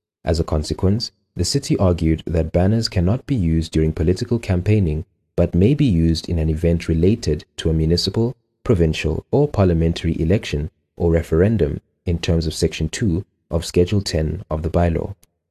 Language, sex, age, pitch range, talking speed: English, male, 30-49, 80-100 Hz, 165 wpm